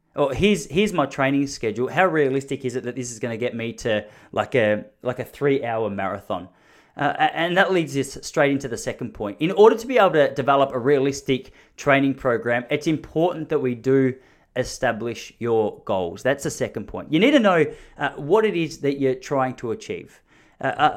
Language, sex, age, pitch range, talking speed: English, male, 30-49, 125-150 Hz, 205 wpm